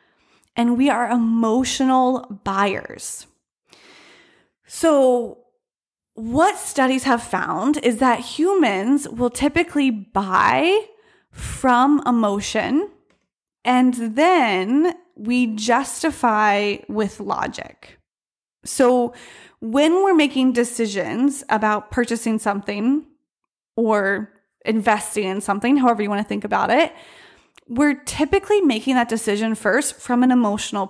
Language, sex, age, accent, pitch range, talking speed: English, female, 20-39, American, 220-280 Hz, 100 wpm